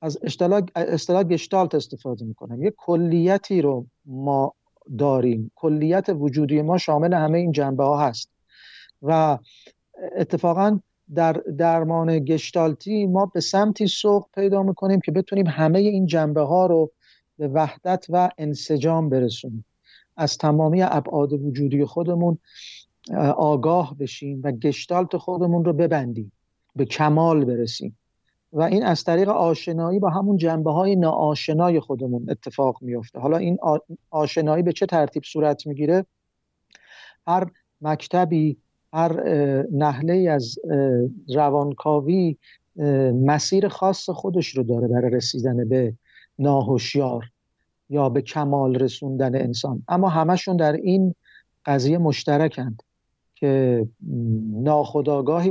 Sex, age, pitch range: male, 50-69, 140-175 Hz